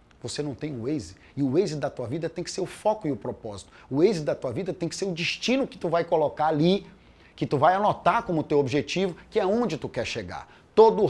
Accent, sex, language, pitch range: Brazilian, male, Portuguese, 140-185 Hz